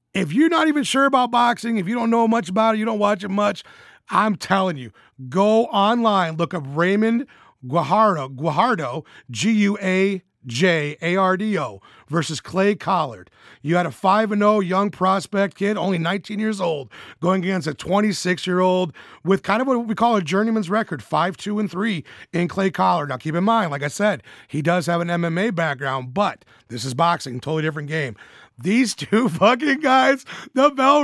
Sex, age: male, 30-49